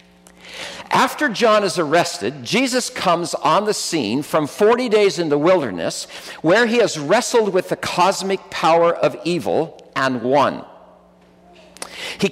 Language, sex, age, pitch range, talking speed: English, male, 50-69, 160-230 Hz, 135 wpm